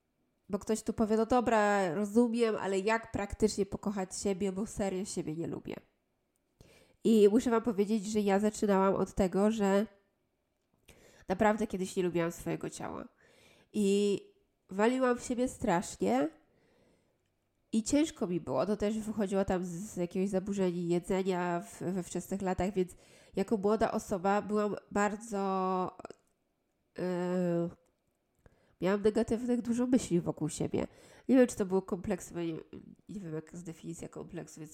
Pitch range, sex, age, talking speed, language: 185-220 Hz, female, 20-39, 135 wpm, Polish